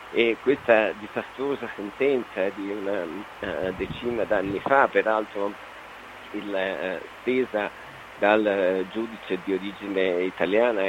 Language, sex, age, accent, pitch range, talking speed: Italian, male, 50-69, native, 100-115 Hz, 90 wpm